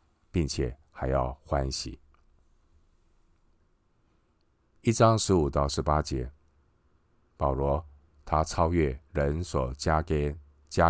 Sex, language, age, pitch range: male, Chinese, 50-69, 70-85 Hz